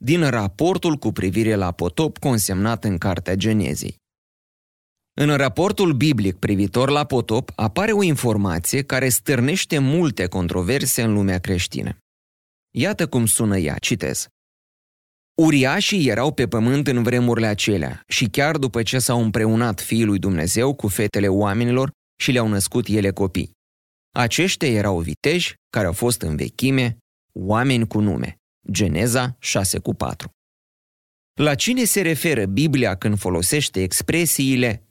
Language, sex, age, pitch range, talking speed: Romanian, male, 30-49, 100-145 Hz, 130 wpm